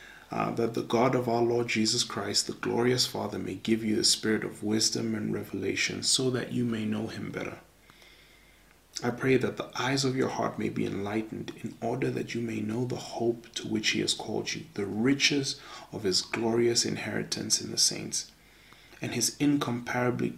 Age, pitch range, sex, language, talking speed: 30-49, 110-125 Hz, male, English, 190 wpm